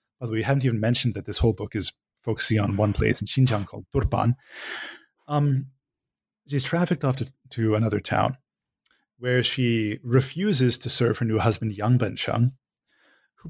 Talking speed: 165 wpm